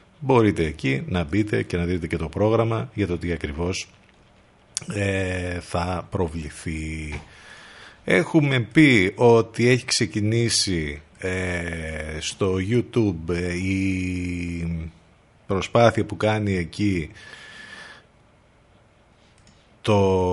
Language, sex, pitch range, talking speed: Greek, male, 85-110 Hz, 95 wpm